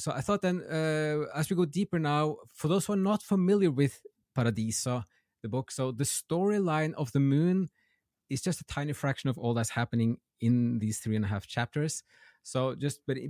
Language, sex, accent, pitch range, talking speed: English, male, Norwegian, 115-150 Hz, 205 wpm